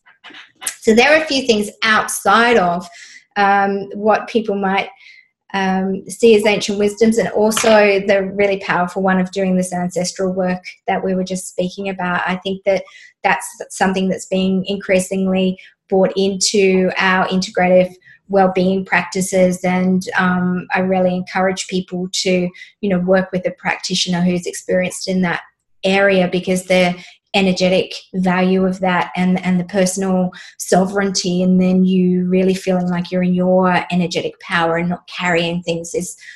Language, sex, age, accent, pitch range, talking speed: English, female, 20-39, Australian, 185-210 Hz, 155 wpm